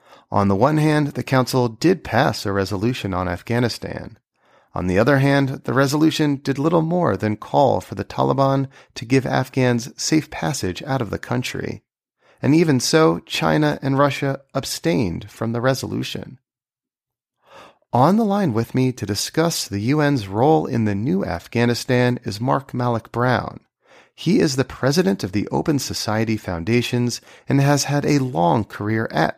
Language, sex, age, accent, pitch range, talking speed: English, male, 30-49, American, 105-140 Hz, 160 wpm